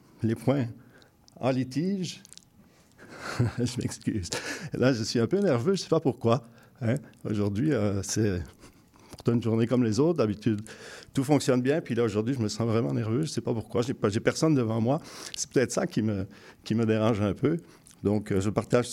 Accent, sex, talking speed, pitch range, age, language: French, male, 200 wpm, 110-135 Hz, 50-69, French